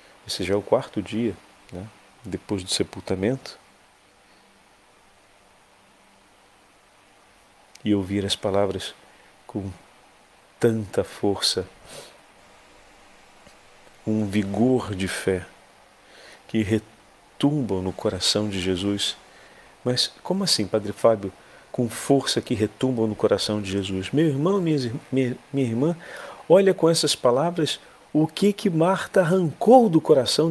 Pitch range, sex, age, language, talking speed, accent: 100-145 Hz, male, 40-59, Portuguese, 110 wpm, Brazilian